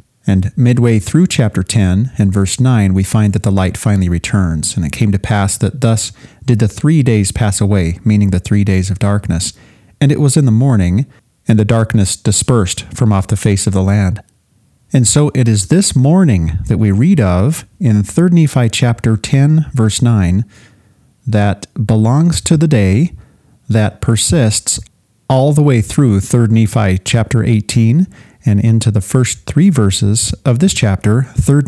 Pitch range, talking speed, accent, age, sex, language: 105-130 Hz, 175 wpm, American, 40-59, male, English